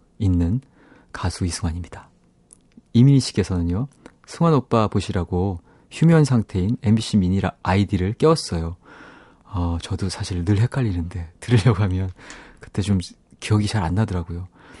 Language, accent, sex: Korean, native, male